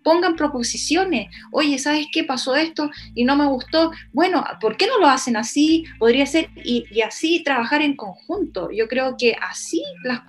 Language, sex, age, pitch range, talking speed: Spanish, female, 30-49, 230-295 Hz, 180 wpm